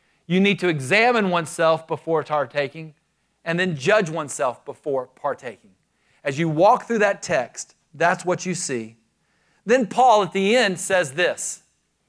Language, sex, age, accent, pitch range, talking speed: English, male, 40-59, American, 150-200 Hz, 150 wpm